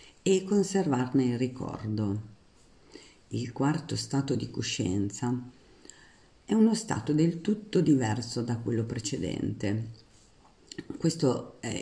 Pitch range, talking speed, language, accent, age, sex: 115-150 Hz, 100 wpm, Italian, native, 50-69, female